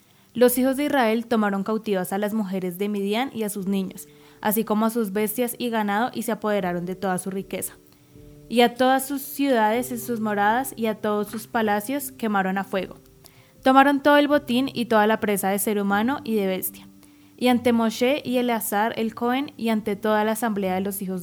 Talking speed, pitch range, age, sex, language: 210 wpm, 195-240 Hz, 20-39, female, Spanish